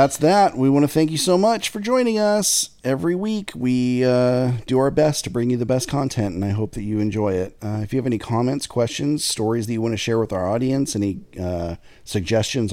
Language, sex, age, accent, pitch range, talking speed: English, male, 40-59, American, 105-140 Hz, 240 wpm